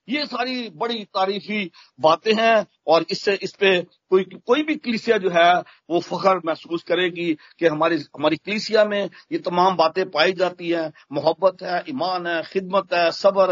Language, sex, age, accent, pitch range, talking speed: Hindi, male, 50-69, native, 180-230 Hz, 165 wpm